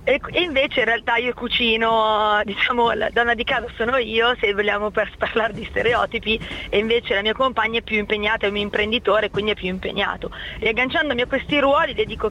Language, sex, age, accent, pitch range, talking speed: Italian, female, 30-49, native, 205-240 Hz, 200 wpm